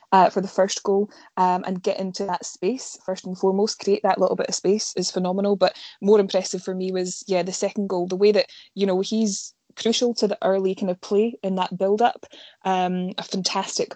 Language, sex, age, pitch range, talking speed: English, female, 20-39, 180-200 Hz, 220 wpm